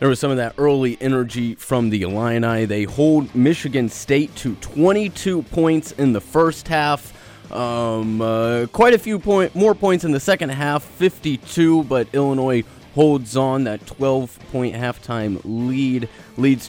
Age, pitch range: 30-49, 110-140 Hz